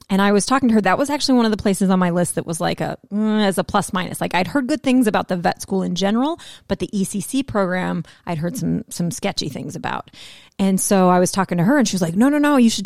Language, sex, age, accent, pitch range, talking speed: English, female, 30-49, American, 185-235 Hz, 290 wpm